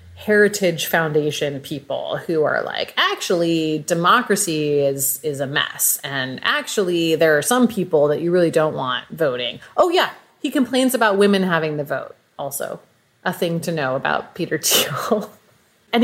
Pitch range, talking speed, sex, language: 150-205 Hz, 155 wpm, female, English